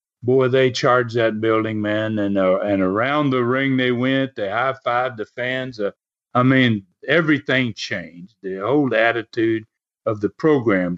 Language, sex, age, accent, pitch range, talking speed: English, male, 60-79, American, 120-175 Hz, 160 wpm